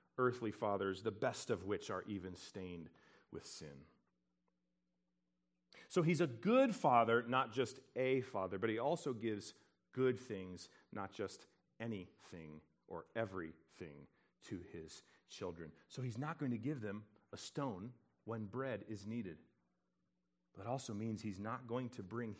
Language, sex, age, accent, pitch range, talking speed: English, male, 40-59, American, 85-125 Hz, 145 wpm